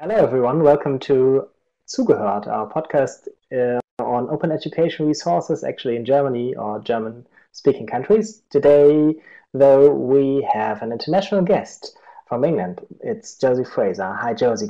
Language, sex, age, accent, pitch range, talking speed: German, male, 30-49, German, 120-170 Hz, 135 wpm